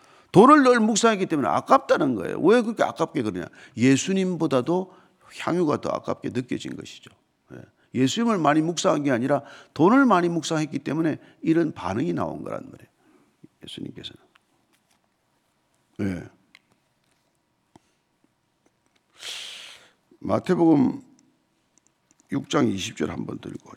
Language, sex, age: Korean, male, 50-69